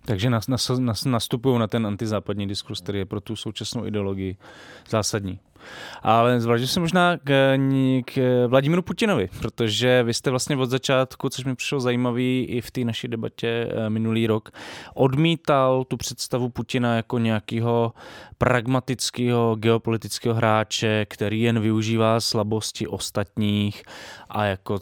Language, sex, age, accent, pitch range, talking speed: Czech, male, 20-39, native, 100-125 Hz, 130 wpm